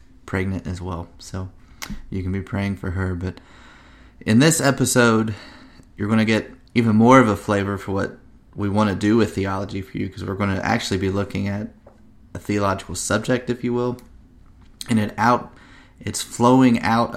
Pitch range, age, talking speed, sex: 95-110 Hz, 30-49, 185 wpm, male